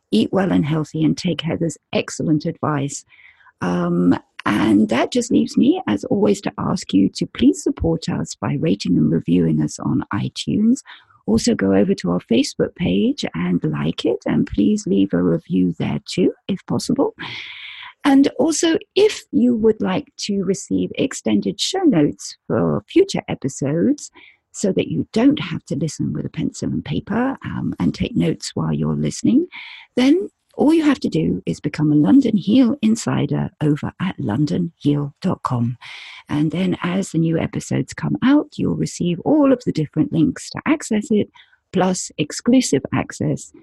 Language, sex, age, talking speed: English, female, 50-69, 165 wpm